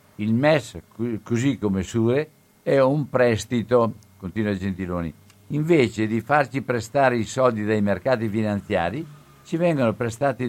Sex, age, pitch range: male, 60-79, 105-125 Hz